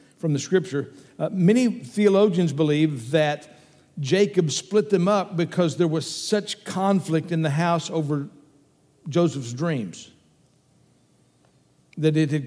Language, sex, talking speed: English, male, 125 wpm